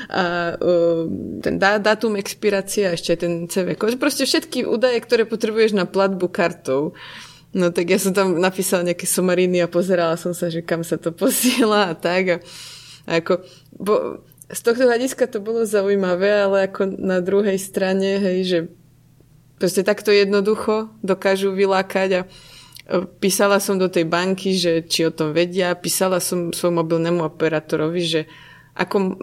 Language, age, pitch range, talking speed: Slovak, 20-39, 170-205 Hz, 155 wpm